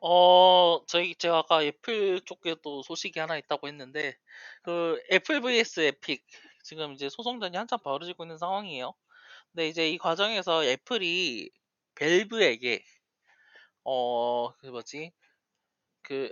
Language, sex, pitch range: Korean, male, 140-200 Hz